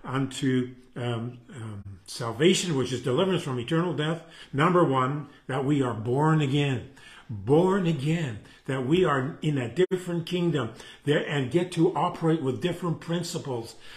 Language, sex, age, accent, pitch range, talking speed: English, male, 50-69, American, 145-190 Hz, 145 wpm